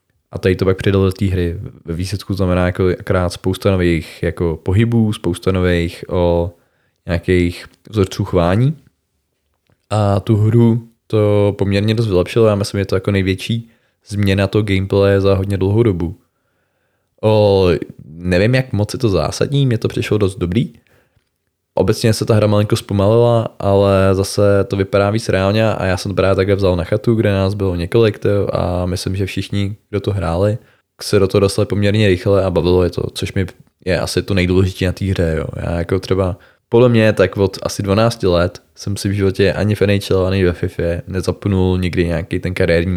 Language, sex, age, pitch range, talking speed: Czech, male, 20-39, 90-105 Hz, 185 wpm